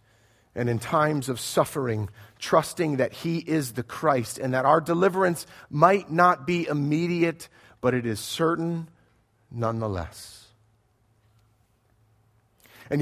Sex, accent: male, American